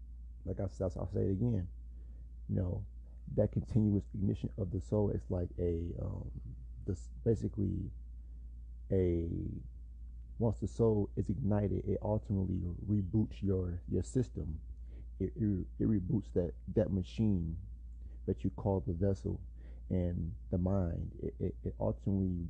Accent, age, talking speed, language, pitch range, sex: American, 30-49, 140 wpm, English, 80-100 Hz, male